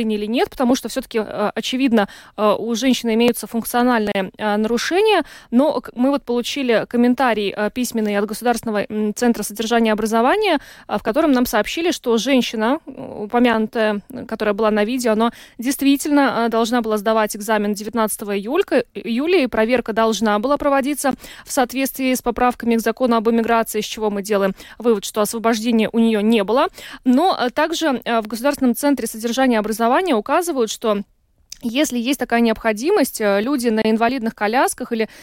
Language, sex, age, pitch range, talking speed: Russian, female, 20-39, 220-265 Hz, 145 wpm